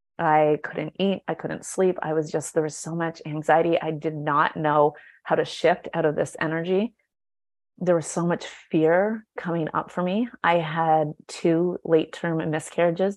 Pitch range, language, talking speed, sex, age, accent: 155-175 Hz, English, 180 wpm, female, 30-49, American